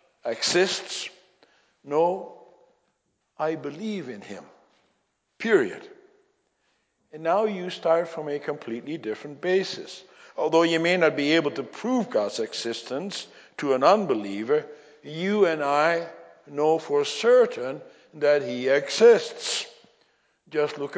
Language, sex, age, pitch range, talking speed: English, male, 60-79, 150-195 Hz, 115 wpm